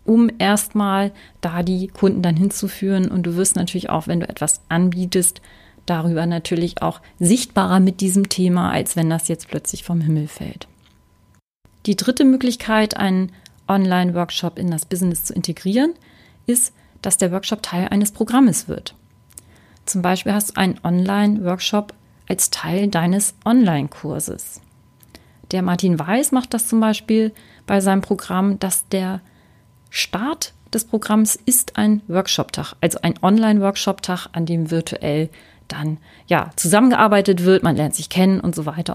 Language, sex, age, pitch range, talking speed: German, female, 30-49, 175-215 Hz, 145 wpm